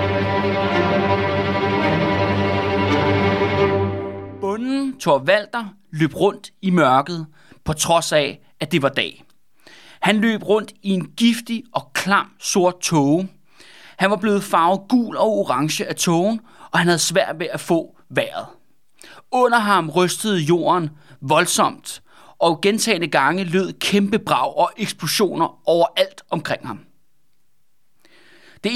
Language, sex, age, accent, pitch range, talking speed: Danish, male, 30-49, native, 155-215 Hz, 120 wpm